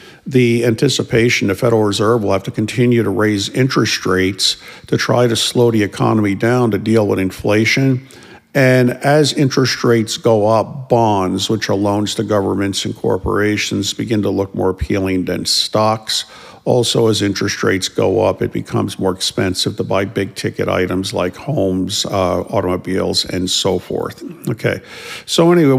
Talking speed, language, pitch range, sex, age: 160 wpm, English, 95-120 Hz, male, 50-69